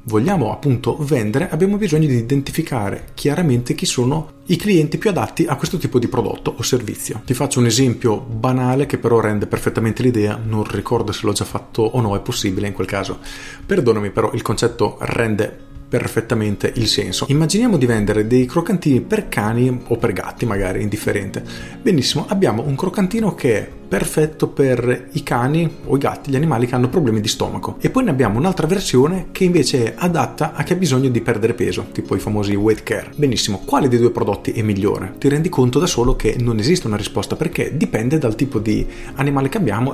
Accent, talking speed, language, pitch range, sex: native, 195 wpm, Italian, 110-150 Hz, male